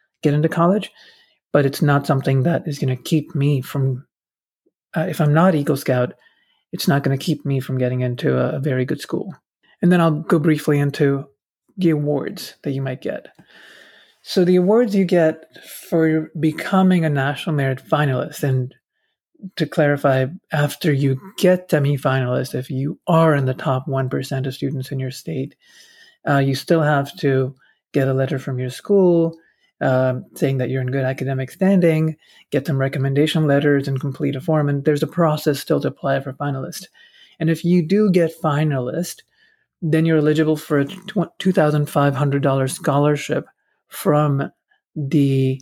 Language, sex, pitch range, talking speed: English, male, 135-165 Hz, 165 wpm